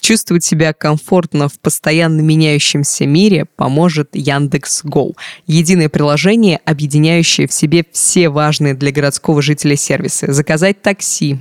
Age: 20-39